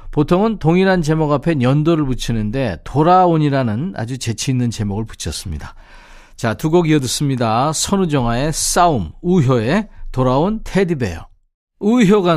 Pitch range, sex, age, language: 115-175 Hz, male, 40-59, Korean